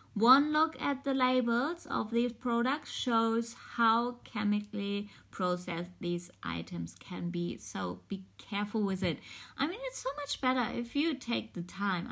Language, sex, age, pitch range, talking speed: English, female, 20-39, 185-240 Hz, 160 wpm